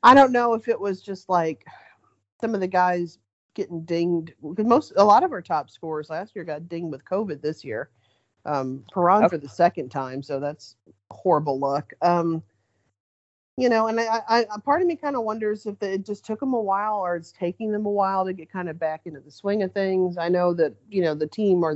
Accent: American